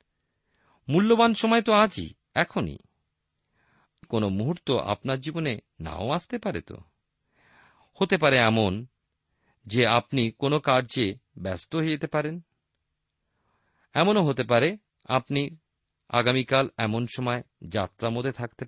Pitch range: 95-140 Hz